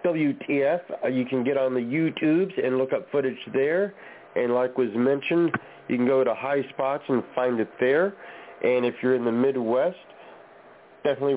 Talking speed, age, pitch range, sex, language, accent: 175 wpm, 40-59, 130-155 Hz, male, English, American